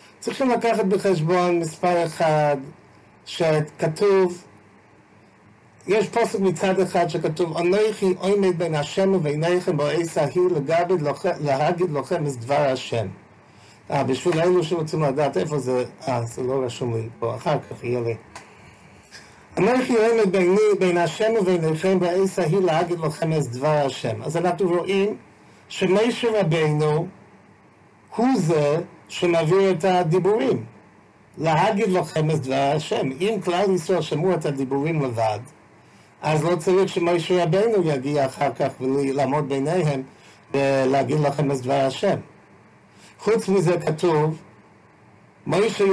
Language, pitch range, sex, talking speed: English, 140-180 Hz, male, 125 wpm